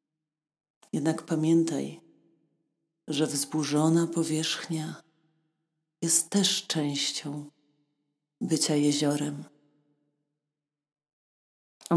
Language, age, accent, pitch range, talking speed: Polish, 40-59, native, 150-165 Hz, 55 wpm